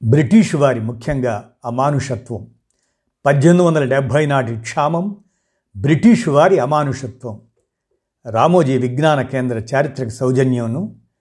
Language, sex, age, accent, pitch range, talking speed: Telugu, male, 60-79, native, 115-155 Hz, 80 wpm